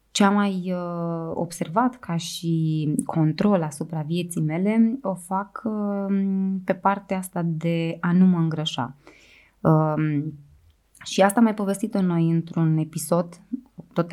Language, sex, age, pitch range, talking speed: Romanian, female, 20-39, 155-195 Hz, 120 wpm